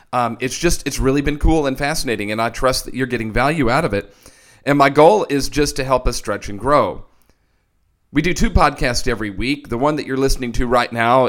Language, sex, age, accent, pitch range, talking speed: English, male, 40-59, American, 110-135 Hz, 235 wpm